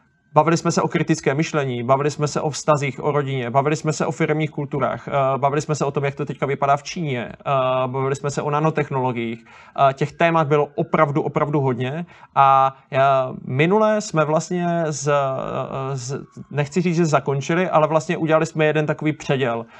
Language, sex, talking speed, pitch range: Czech, male, 175 wpm, 140-155 Hz